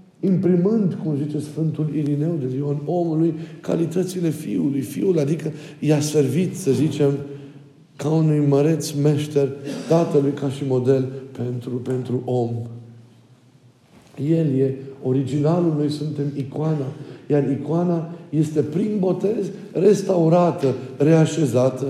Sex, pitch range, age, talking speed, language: male, 130-160 Hz, 50-69, 110 wpm, Romanian